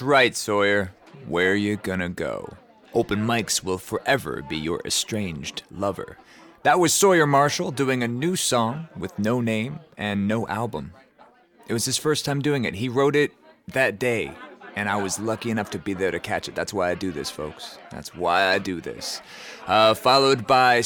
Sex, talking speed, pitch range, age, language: male, 190 wpm, 105-165 Hz, 30-49, English